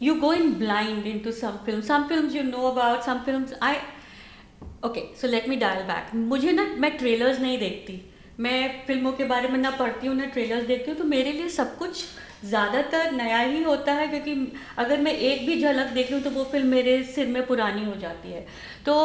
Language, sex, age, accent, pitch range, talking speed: Hindi, female, 50-69, native, 245-310 Hz, 215 wpm